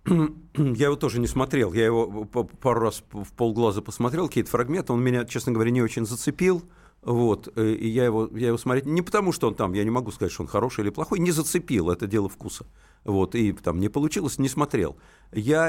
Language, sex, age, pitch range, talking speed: Russian, male, 50-69, 100-125 Hz, 205 wpm